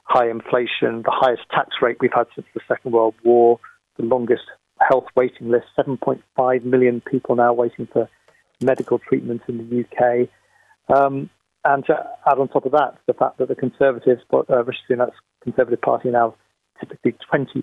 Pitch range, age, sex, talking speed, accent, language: 120-145 Hz, 40-59, male, 175 wpm, British, English